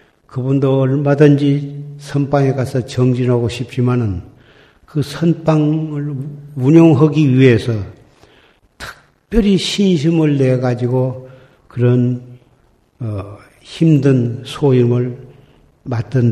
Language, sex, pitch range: Korean, male, 120-145 Hz